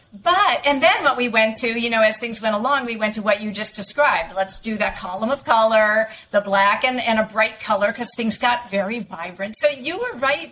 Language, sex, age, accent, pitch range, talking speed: English, female, 50-69, American, 205-260 Hz, 240 wpm